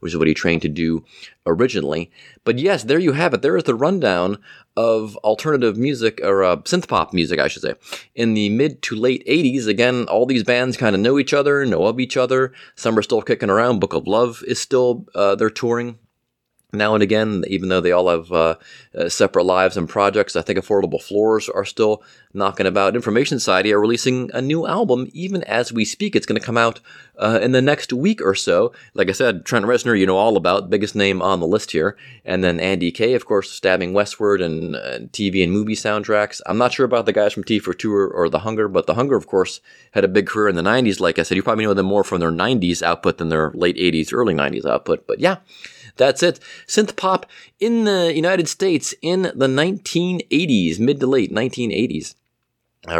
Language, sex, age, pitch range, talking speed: English, male, 30-49, 95-125 Hz, 220 wpm